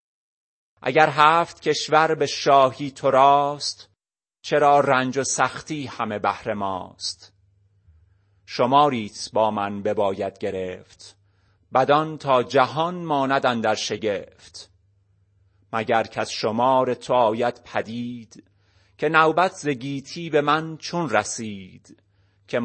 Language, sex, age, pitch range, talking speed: Persian, male, 30-49, 100-130 Hz, 105 wpm